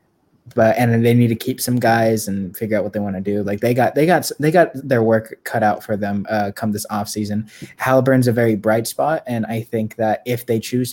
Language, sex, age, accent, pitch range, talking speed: English, male, 20-39, American, 110-125 Hz, 245 wpm